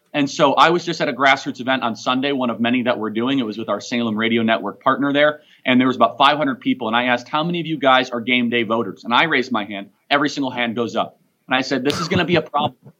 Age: 30-49